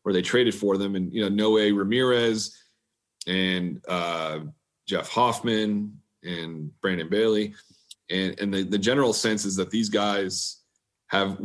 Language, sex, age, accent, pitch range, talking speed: English, male, 30-49, American, 95-105 Hz, 145 wpm